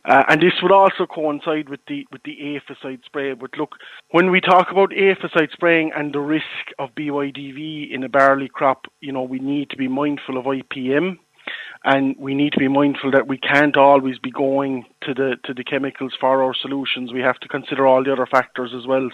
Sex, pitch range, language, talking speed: male, 130-150 Hz, English, 215 wpm